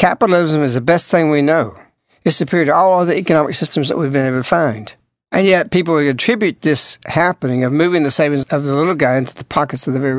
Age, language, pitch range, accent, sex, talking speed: 60-79, English, 145-180 Hz, American, male, 240 wpm